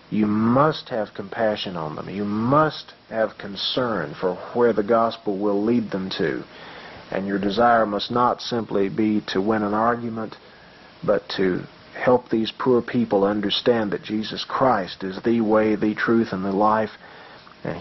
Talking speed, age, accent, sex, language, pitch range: 160 wpm, 40-59, American, male, English, 95-115 Hz